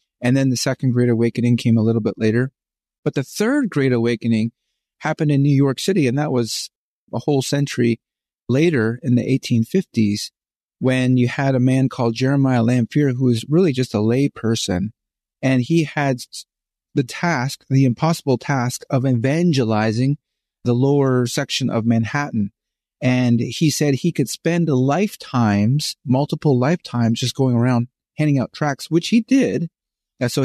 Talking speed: 160 wpm